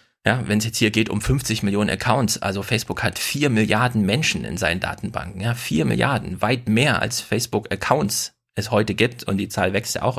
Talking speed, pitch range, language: 205 wpm, 105-120 Hz, German